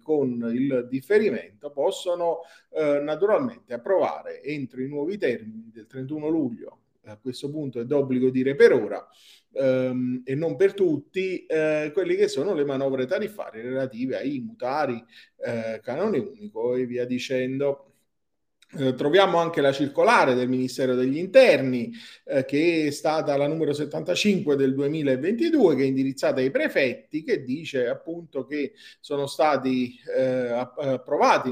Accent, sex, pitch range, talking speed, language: native, male, 125-165 Hz, 140 wpm, Italian